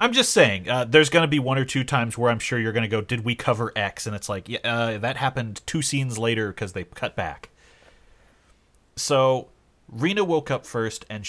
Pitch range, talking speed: 95-130 Hz, 230 wpm